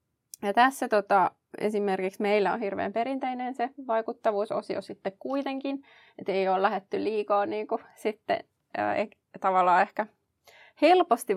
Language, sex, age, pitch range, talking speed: Finnish, female, 20-39, 190-230 Hz, 115 wpm